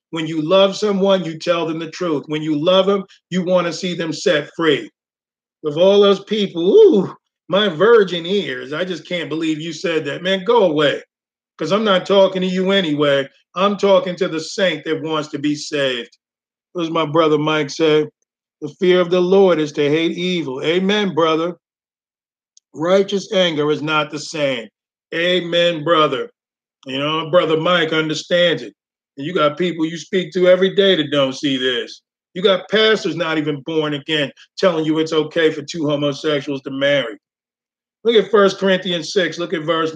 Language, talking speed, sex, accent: English, 185 wpm, male, American